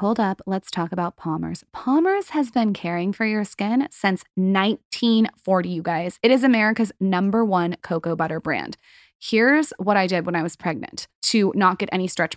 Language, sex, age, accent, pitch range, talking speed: English, female, 20-39, American, 185-225 Hz, 185 wpm